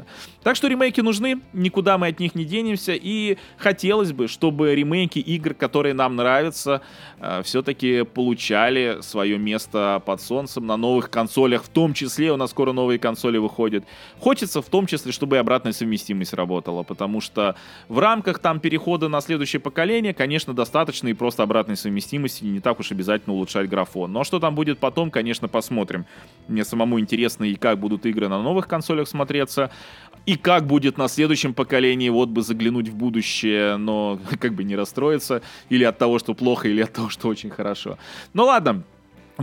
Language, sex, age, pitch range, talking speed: Russian, male, 20-39, 110-160 Hz, 175 wpm